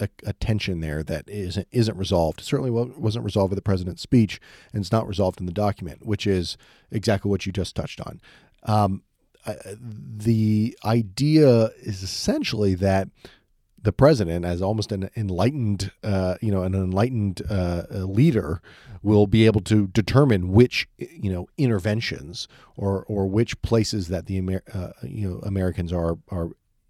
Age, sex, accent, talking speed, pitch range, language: 40-59, male, American, 160 wpm, 90-110 Hz, English